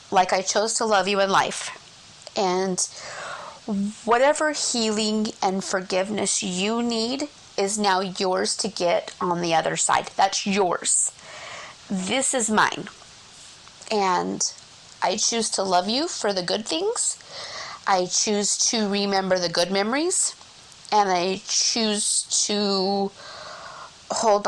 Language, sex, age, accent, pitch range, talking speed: English, female, 30-49, American, 190-245 Hz, 125 wpm